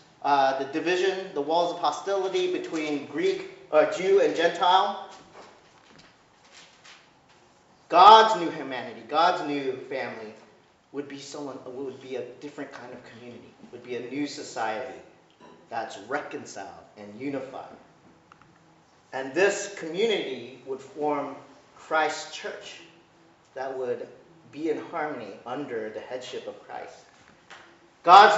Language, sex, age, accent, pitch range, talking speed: English, male, 40-59, American, 140-215 Hz, 120 wpm